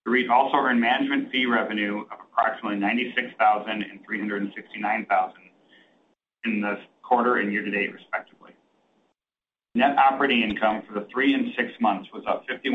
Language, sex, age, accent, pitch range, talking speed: English, male, 40-59, American, 105-130 Hz, 130 wpm